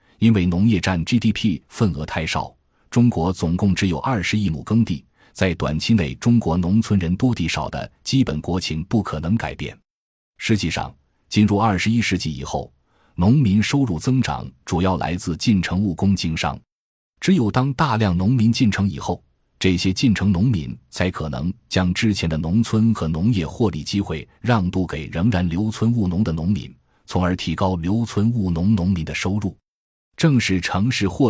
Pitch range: 85-110 Hz